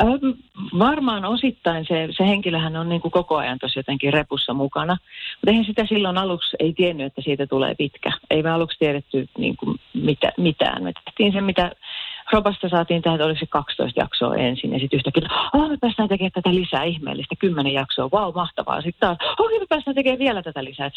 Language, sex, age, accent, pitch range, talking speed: Finnish, female, 40-59, native, 140-185 Hz, 195 wpm